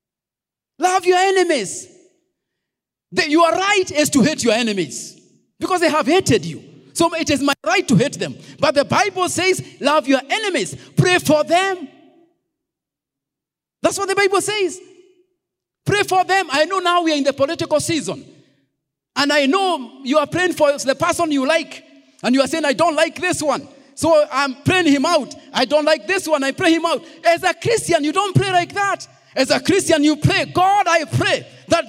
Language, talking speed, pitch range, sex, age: English, 190 wpm, 270-355 Hz, male, 40-59